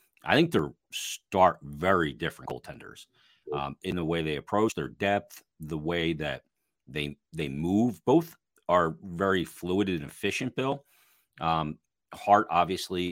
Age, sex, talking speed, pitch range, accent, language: 40-59, male, 140 wpm, 75-95 Hz, American, English